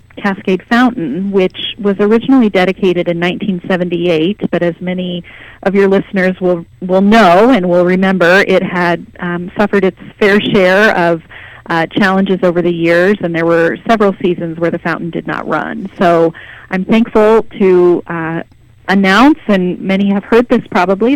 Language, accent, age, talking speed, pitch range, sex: English, American, 30-49, 160 wpm, 170-200 Hz, female